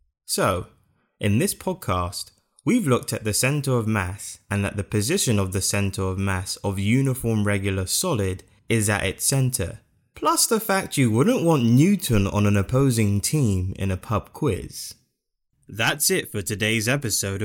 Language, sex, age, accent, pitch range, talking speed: English, male, 20-39, British, 100-135 Hz, 165 wpm